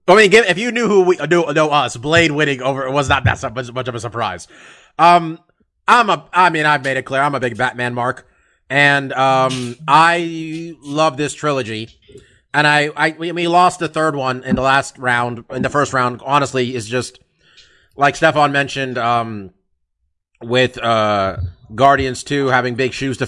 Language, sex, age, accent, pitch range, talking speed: English, male, 30-49, American, 120-165 Hz, 185 wpm